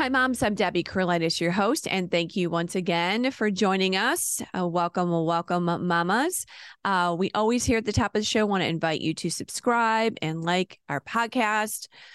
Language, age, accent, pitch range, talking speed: English, 30-49, American, 155-195 Hz, 195 wpm